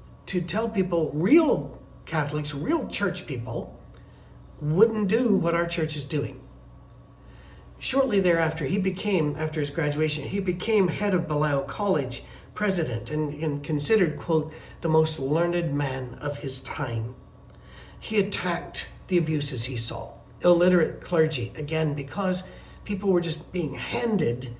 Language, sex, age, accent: English, male, 50-69, American